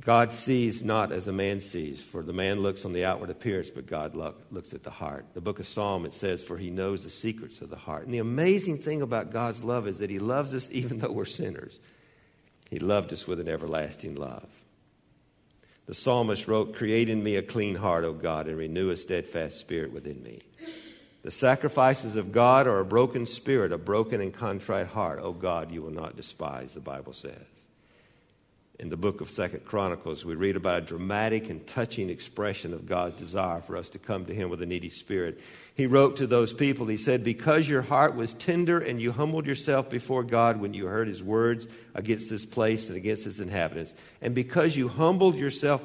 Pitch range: 90-125 Hz